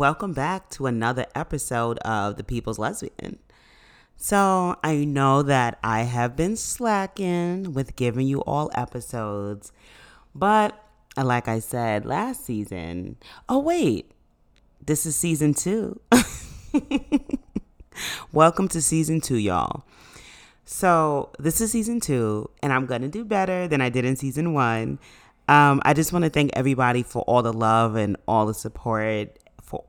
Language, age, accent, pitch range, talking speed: English, 30-49, American, 120-175 Hz, 145 wpm